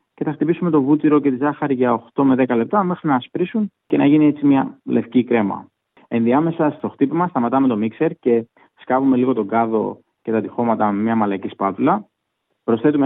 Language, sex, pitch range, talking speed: Greek, male, 110-145 Hz, 195 wpm